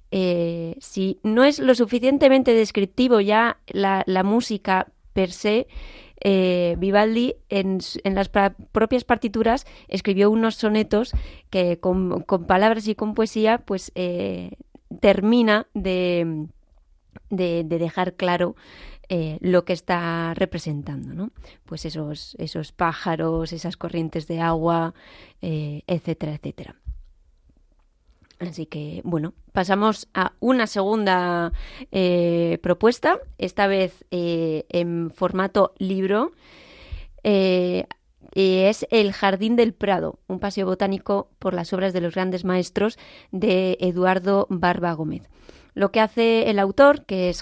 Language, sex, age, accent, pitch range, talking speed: Spanish, female, 20-39, Spanish, 175-215 Hz, 125 wpm